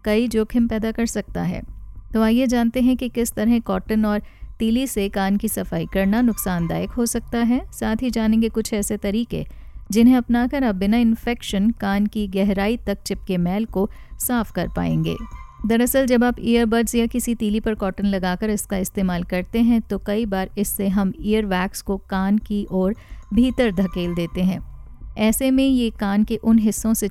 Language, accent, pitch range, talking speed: Hindi, native, 195-235 Hz, 185 wpm